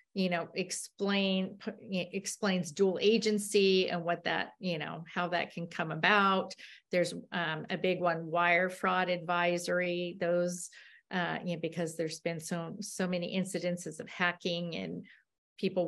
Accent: American